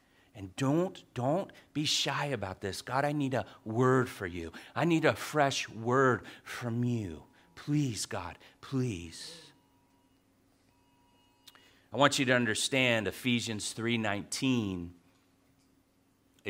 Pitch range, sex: 100-135 Hz, male